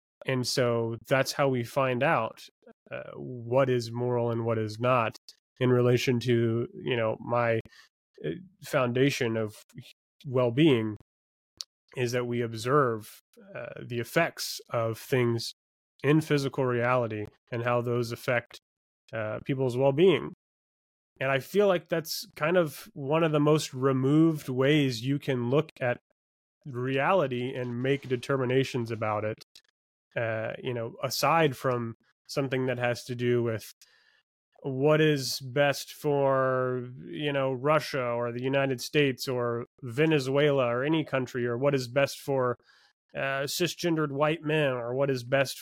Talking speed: 140 wpm